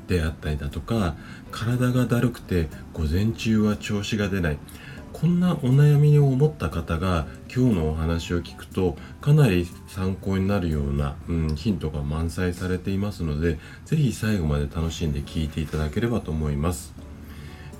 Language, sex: Japanese, male